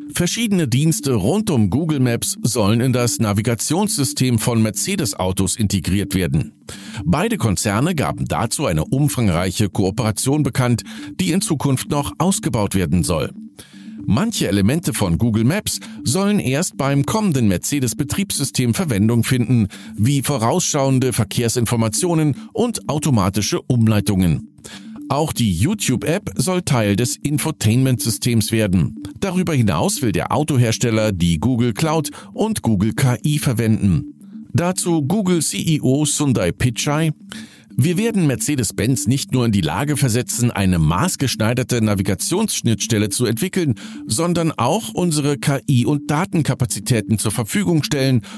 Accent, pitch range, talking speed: German, 110-155 Hz, 115 wpm